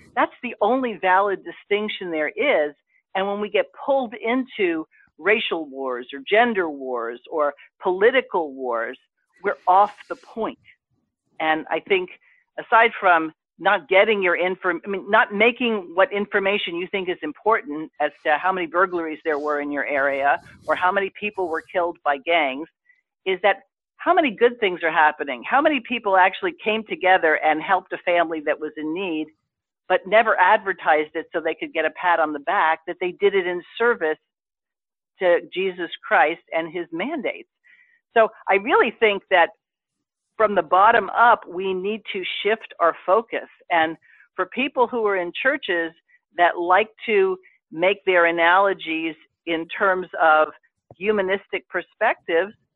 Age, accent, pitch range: 50-69, American, 165-225 Hz